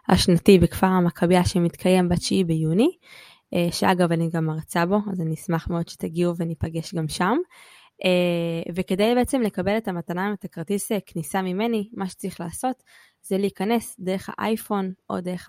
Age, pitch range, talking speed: 20-39, 170-200 Hz, 145 wpm